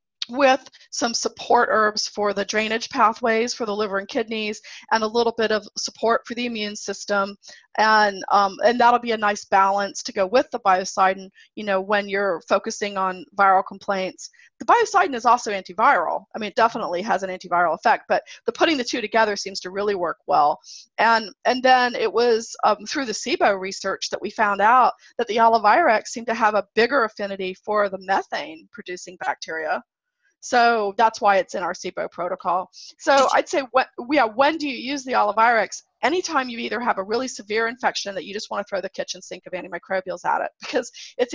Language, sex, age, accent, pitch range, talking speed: English, female, 30-49, American, 190-235 Hz, 200 wpm